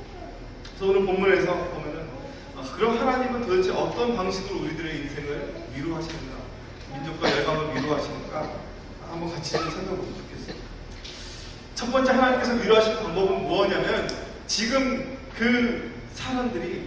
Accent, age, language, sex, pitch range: native, 30-49, Korean, male, 175-235 Hz